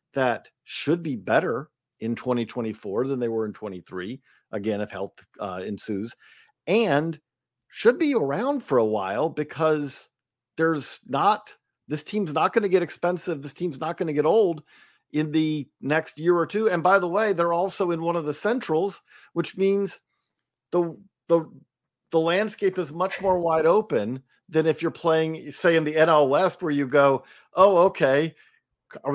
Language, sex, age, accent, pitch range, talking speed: English, male, 50-69, American, 135-175 Hz, 170 wpm